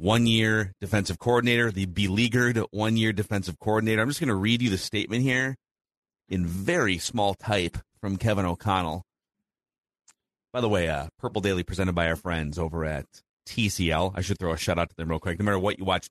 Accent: American